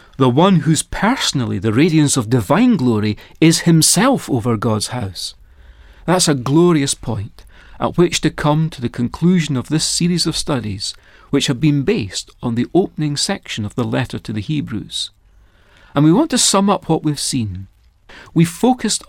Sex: male